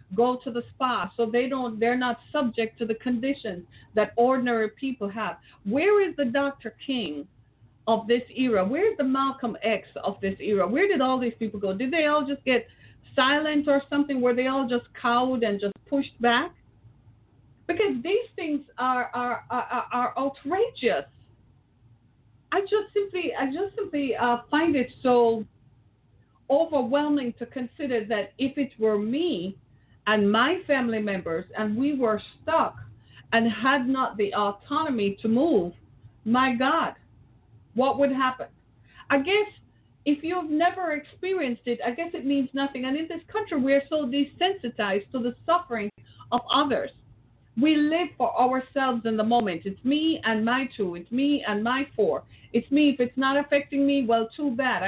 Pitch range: 215-280 Hz